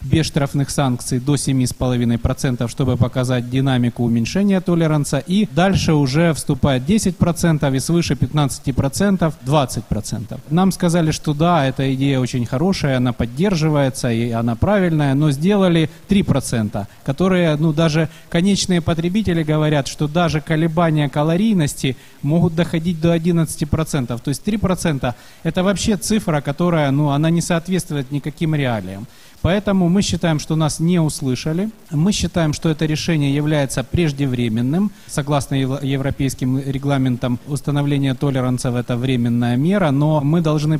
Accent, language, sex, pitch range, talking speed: native, Ukrainian, male, 135-170 Hz, 130 wpm